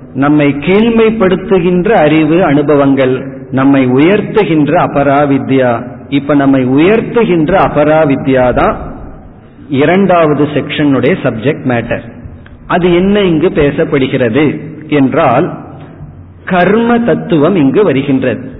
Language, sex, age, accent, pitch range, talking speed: Tamil, male, 50-69, native, 135-180 Hz, 80 wpm